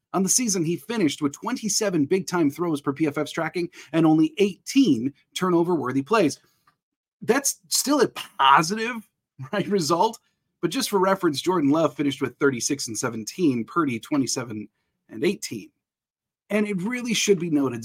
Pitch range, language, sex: 130-190 Hz, English, male